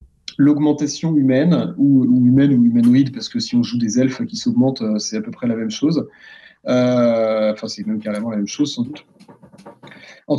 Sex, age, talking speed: male, 30-49, 190 wpm